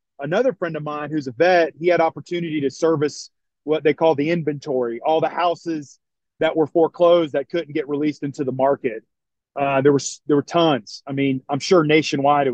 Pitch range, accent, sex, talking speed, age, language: 140-170 Hz, American, male, 200 wpm, 30-49, English